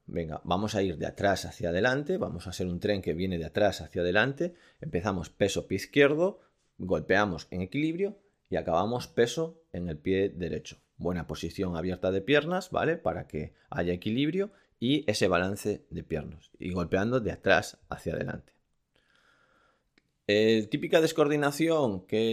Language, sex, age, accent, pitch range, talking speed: Spanish, male, 30-49, Spanish, 90-125 Hz, 155 wpm